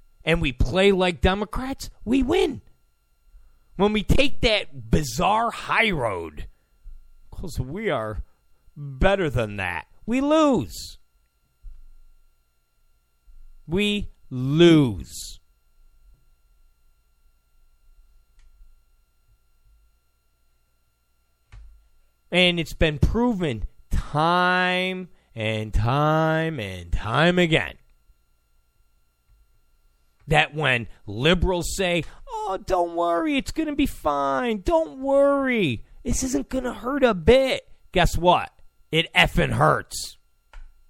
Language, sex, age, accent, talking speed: English, male, 40-59, American, 90 wpm